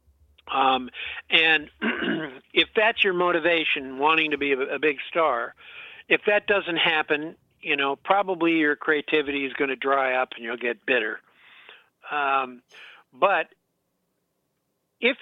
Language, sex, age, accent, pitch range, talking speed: English, male, 60-79, American, 130-160 Hz, 135 wpm